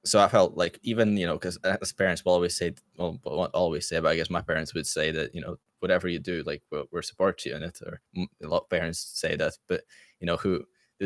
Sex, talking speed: male, 275 wpm